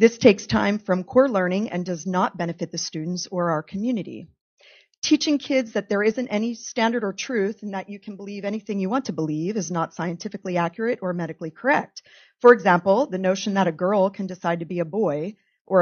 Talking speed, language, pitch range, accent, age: 210 wpm, English, 175-225 Hz, American, 40-59